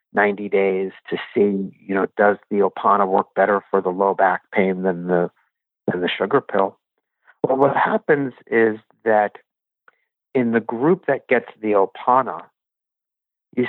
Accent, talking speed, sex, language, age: American, 155 wpm, male, English, 50-69